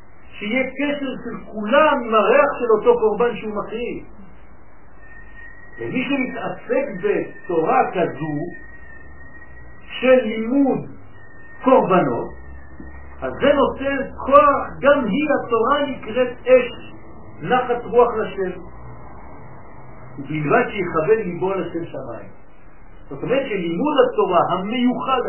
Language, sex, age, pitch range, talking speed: French, male, 60-79, 160-260 Hz, 90 wpm